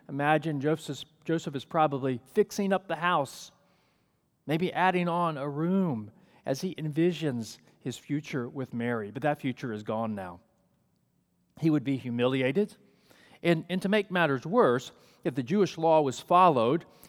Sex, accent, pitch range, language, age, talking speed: male, American, 125-170 Hz, English, 40-59, 150 wpm